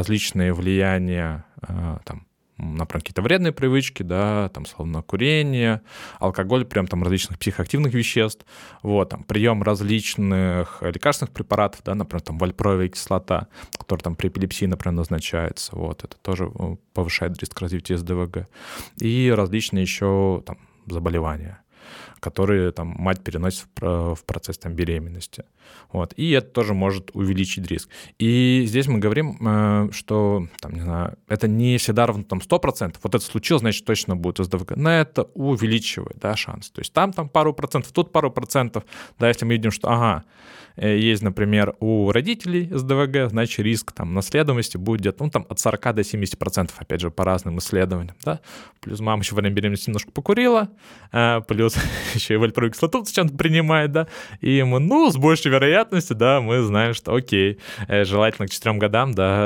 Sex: male